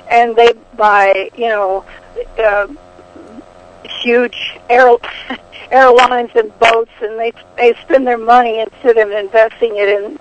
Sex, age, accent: female, 60-79, American